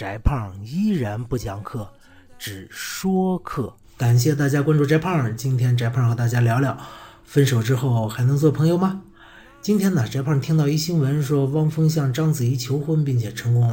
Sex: male